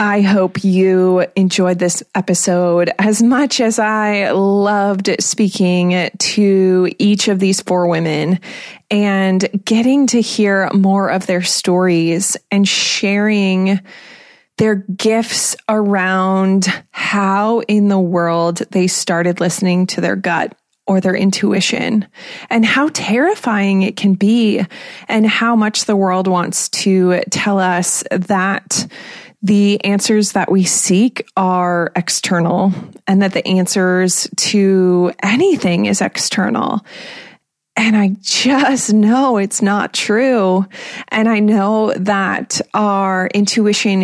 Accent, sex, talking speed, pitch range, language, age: American, female, 120 wpm, 185-215 Hz, English, 20-39